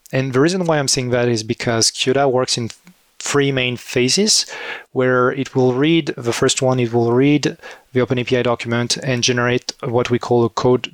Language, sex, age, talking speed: English, male, 30-49, 190 wpm